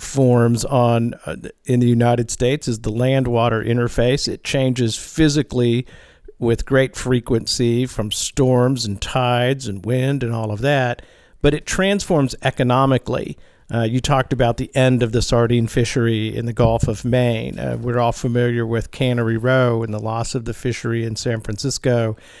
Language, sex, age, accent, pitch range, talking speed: English, male, 50-69, American, 115-135 Hz, 165 wpm